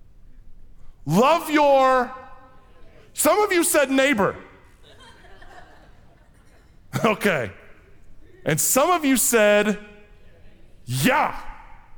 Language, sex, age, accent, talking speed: English, male, 40-59, American, 70 wpm